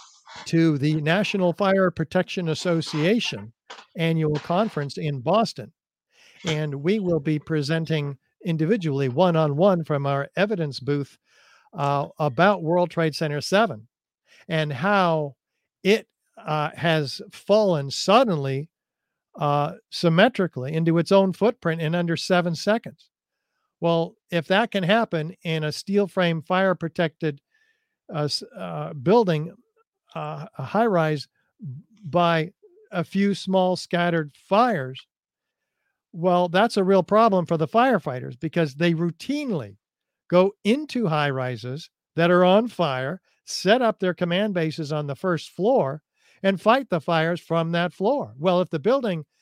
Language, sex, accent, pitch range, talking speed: English, male, American, 155-195 Hz, 130 wpm